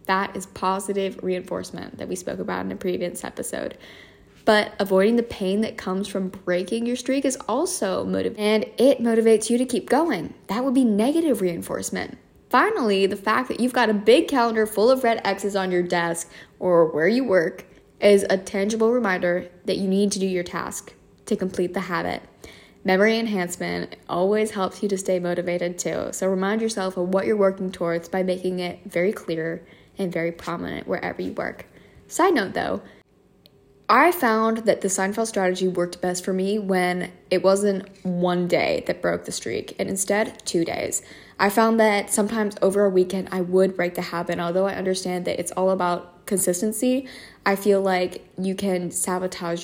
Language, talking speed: English, 185 wpm